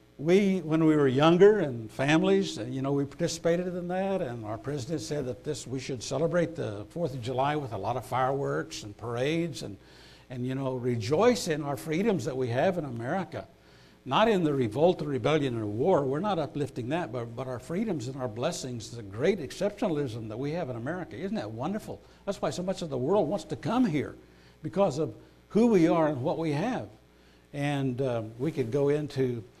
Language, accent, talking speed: English, American, 205 wpm